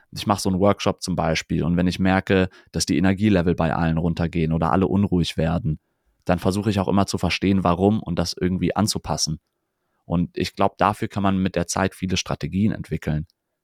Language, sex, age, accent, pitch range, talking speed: German, male, 30-49, German, 90-110 Hz, 200 wpm